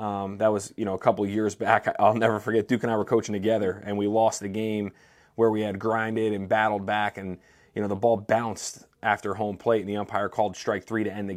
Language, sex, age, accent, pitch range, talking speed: English, male, 30-49, American, 105-120 Hz, 255 wpm